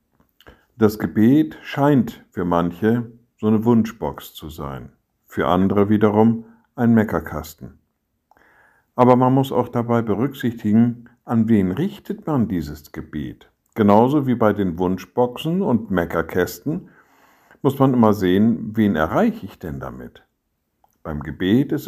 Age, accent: 60-79, German